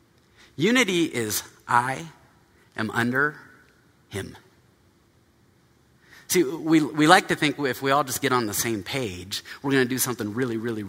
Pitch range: 110-145 Hz